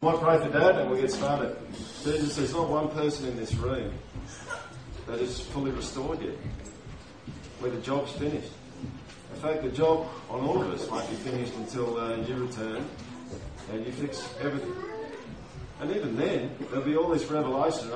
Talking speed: 180 wpm